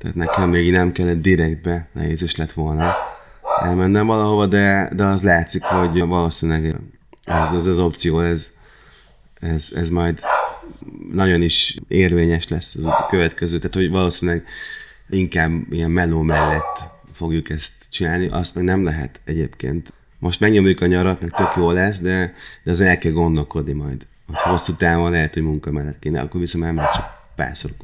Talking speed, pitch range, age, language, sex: 155 wpm, 85-100 Hz, 30-49, Hungarian, male